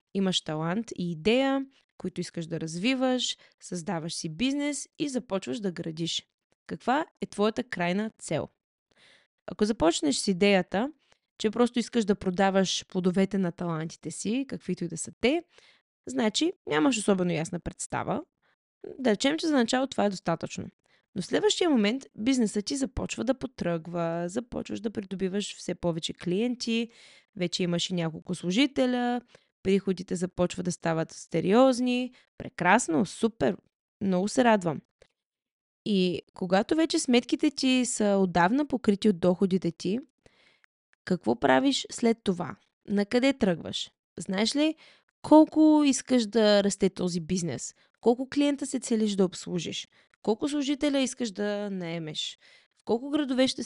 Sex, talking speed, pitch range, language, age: female, 135 wpm, 180-255 Hz, Bulgarian, 20-39